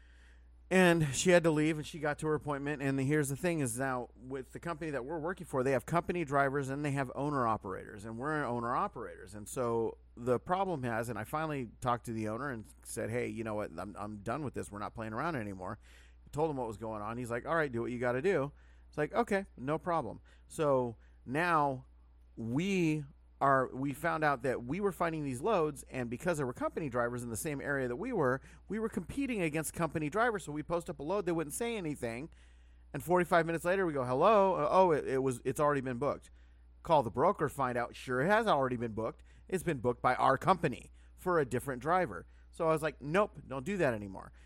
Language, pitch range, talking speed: English, 115-165 Hz, 230 wpm